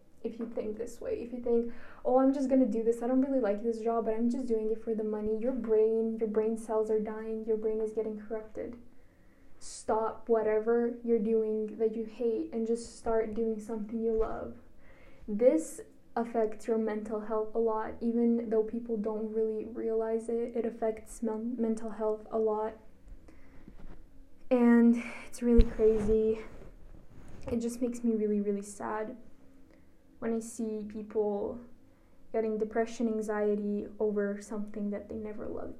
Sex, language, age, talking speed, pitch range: female, English, 10-29, 165 wpm, 215-235 Hz